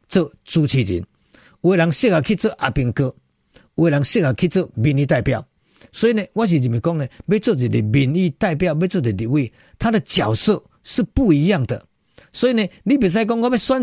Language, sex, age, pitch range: Chinese, male, 50-69, 125-190 Hz